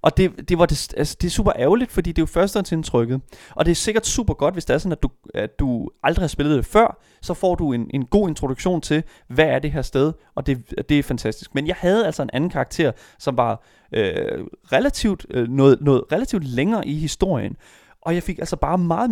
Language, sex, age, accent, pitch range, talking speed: Danish, male, 30-49, native, 130-185 Hz, 240 wpm